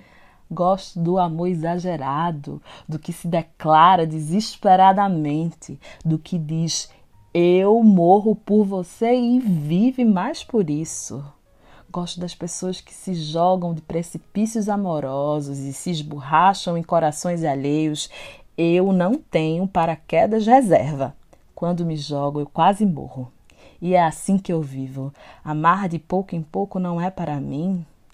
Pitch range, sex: 150-185 Hz, female